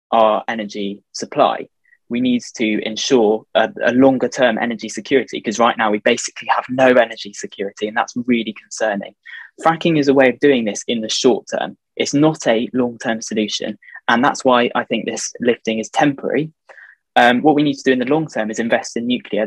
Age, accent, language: 10-29, British, English